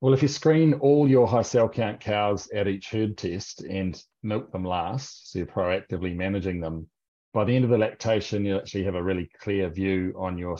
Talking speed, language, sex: 215 wpm, English, male